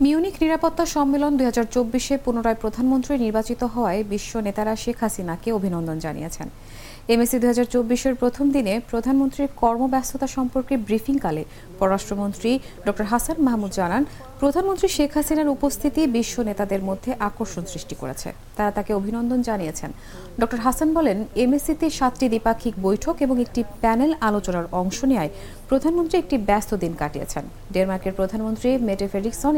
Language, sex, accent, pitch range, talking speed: English, female, Indian, 200-270 Hz, 110 wpm